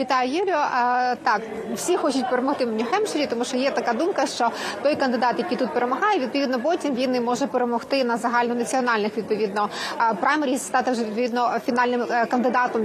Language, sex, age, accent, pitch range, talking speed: Ukrainian, female, 20-39, native, 245-275 Hz, 155 wpm